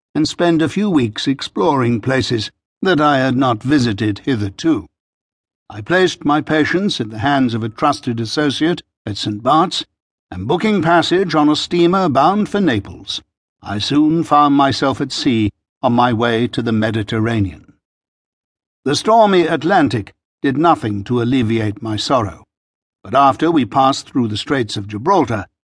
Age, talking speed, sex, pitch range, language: 60-79, 155 wpm, male, 115-160 Hz, English